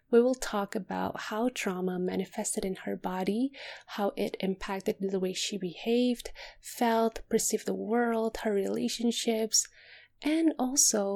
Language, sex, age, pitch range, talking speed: English, female, 20-39, 200-235 Hz, 135 wpm